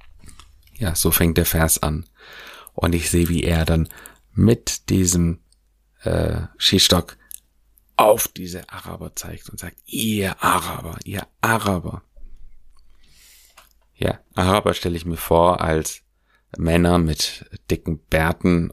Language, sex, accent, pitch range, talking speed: German, male, German, 80-95 Hz, 120 wpm